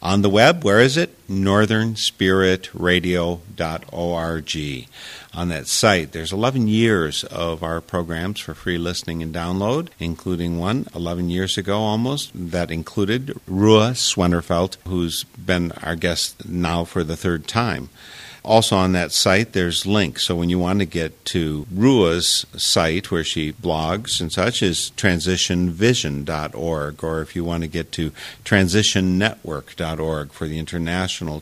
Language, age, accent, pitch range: English, 50-69, American, 80-100 Hz